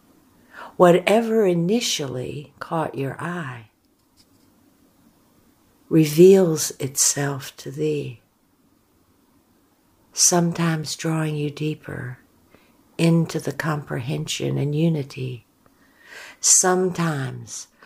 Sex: female